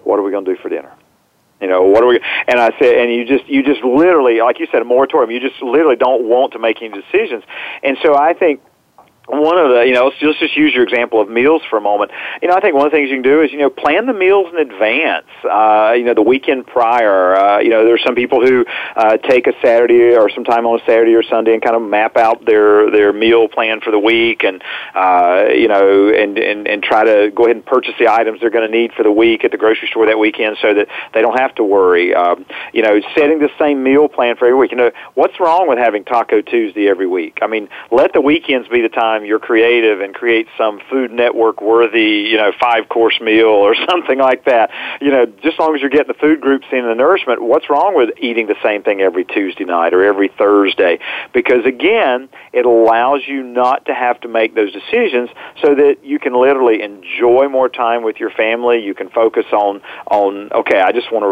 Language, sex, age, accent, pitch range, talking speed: English, male, 40-59, American, 110-135 Hz, 245 wpm